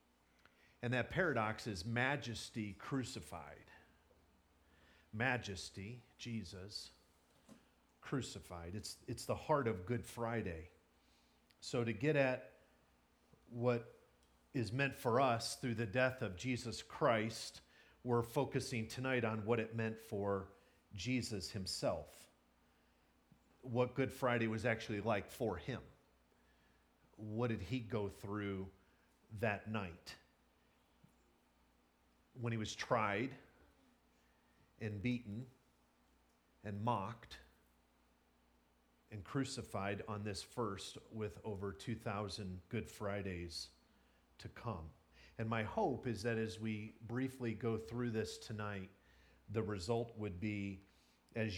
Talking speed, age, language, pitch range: 110 wpm, 40-59, English, 85-120 Hz